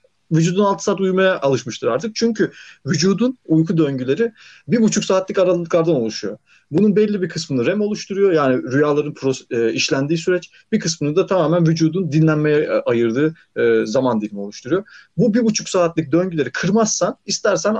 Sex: male